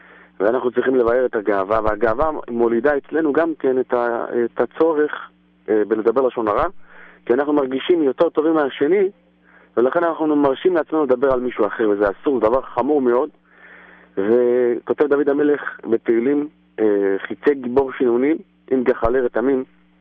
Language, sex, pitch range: English, male, 110-145 Hz